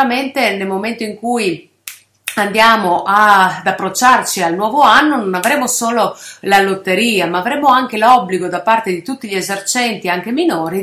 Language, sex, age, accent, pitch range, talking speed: Italian, female, 30-49, native, 185-250 Hz, 150 wpm